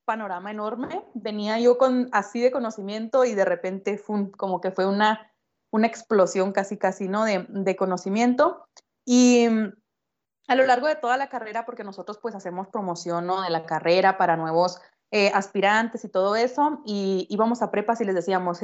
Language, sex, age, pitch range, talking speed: Spanish, female, 20-39, 190-235 Hz, 180 wpm